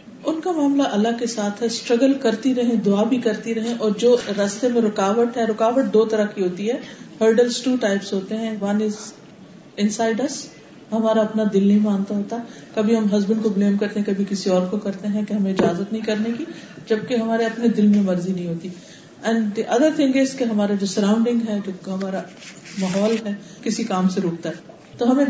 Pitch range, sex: 200-245 Hz, female